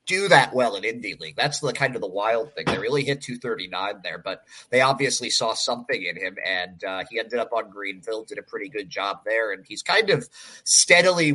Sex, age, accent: male, 30-49, American